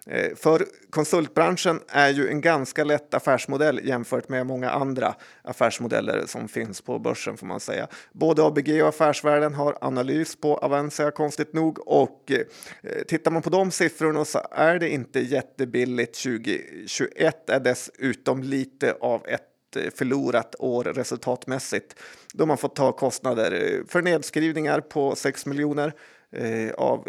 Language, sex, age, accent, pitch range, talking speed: Swedish, male, 30-49, native, 130-155 Hz, 135 wpm